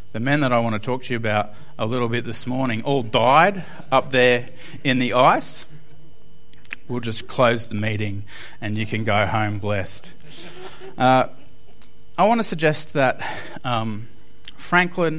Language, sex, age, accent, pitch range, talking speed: English, male, 30-49, Australian, 105-130 Hz, 160 wpm